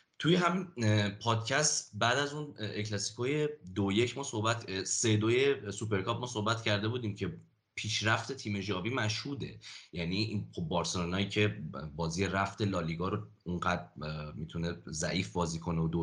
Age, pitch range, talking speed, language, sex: 30-49, 90-115 Hz, 135 wpm, English, male